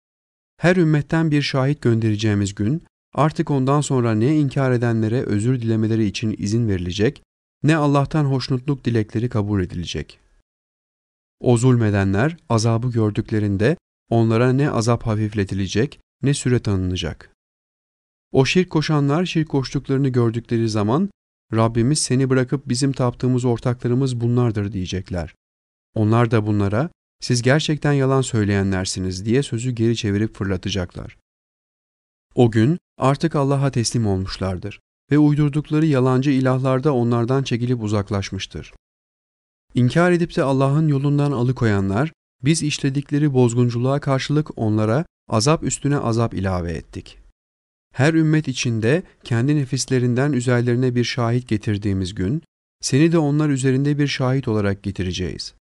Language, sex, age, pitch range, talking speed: Turkish, male, 40-59, 105-140 Hz, 115 wpm